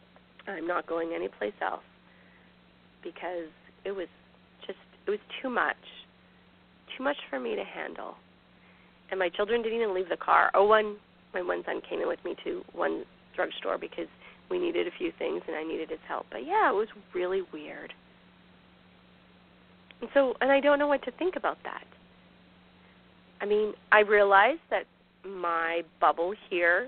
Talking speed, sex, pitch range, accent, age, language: 165 wpm, female, 170-240 Hz, American, 30-49, English